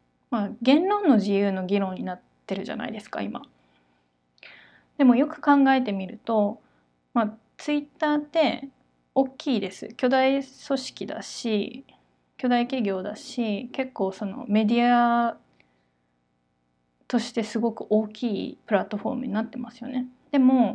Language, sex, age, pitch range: Japanese, female, 20-39, 185-255 Hz